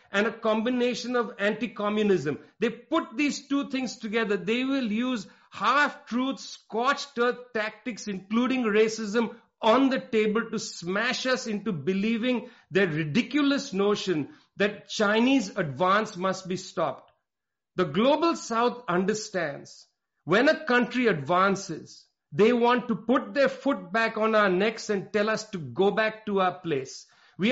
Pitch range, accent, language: 185-240 Hz, Indian, English